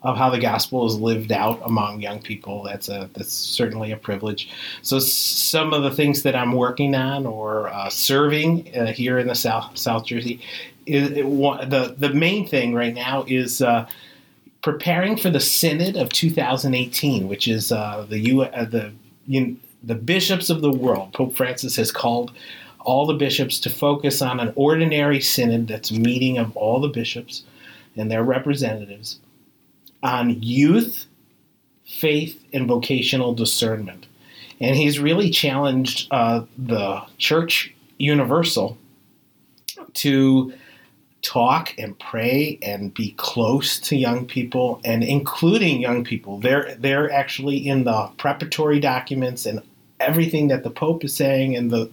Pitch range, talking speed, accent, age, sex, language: 115-140 Hz, 150 wpm, American, 30-49, male, English